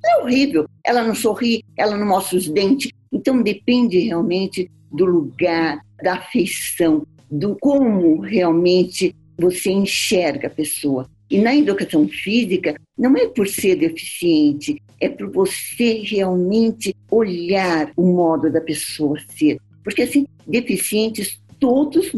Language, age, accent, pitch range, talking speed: Portuguese, 50-69, Brazilian, 175-260 Hz, 125 wpm